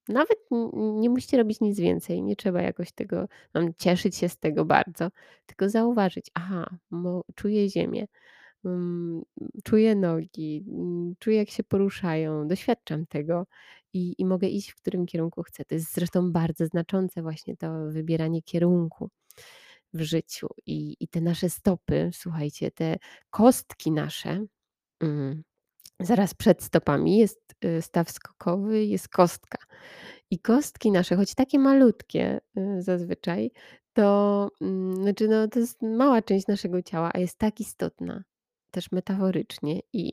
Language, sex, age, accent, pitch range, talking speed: Polish, female, 20-39, native, 170-215 Hz, 130 wpm